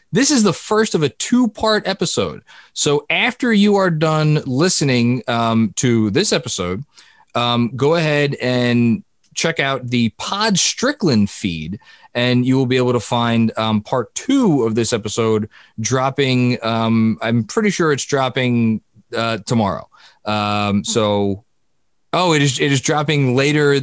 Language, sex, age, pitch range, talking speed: English, male, 20-39, 110-155 Hz, 150 wpm